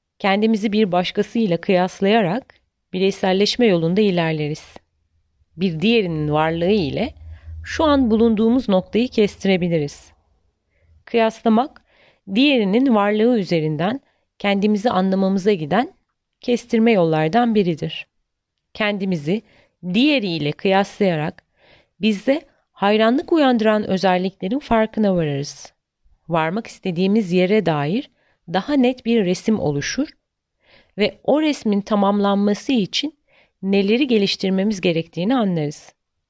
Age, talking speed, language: 30-49, 90 wpm, Turkish